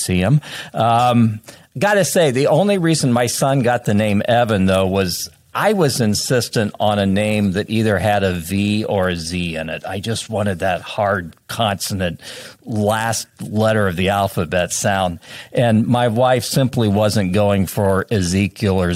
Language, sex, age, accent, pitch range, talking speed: English, male, 50-69, American, 100-130 Hz, 170 wpm